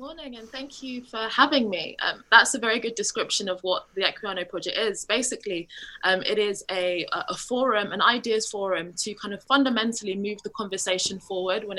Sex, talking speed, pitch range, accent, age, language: female, 195 wpm, 190-225 Hz, British, 20-39, English